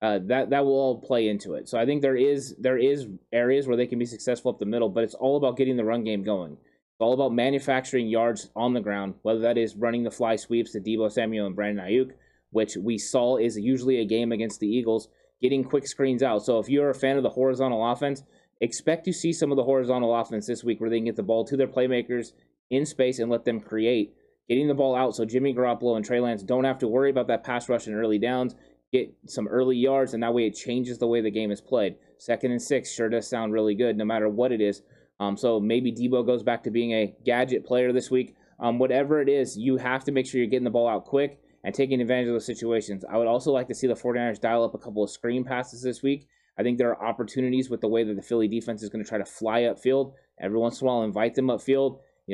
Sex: male